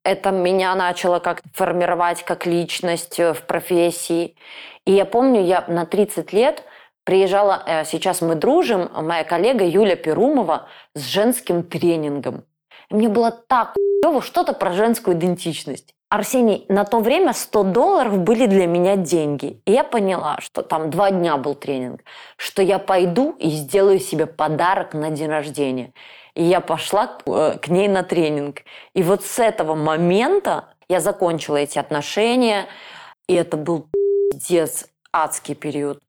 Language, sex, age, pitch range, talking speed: Russian, female, 20-39, 160-200 Hz, 140 wpm